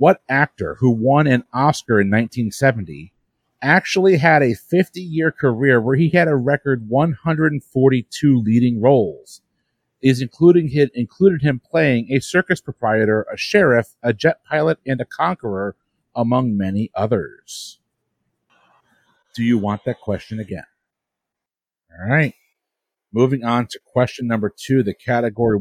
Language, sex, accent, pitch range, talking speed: English, male, American, 110-140 Hz, 135 wpm